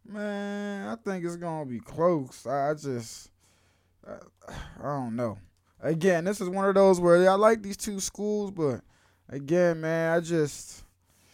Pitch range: 110-175 Hz